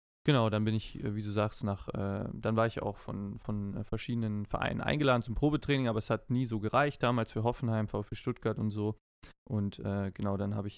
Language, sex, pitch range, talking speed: German, male, 105-120 Hz, 215 wpm